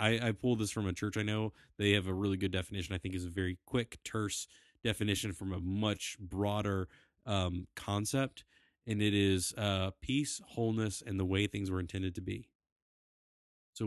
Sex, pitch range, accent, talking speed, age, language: male, 95-105 Hz, American, 190 wpm, 30-49, English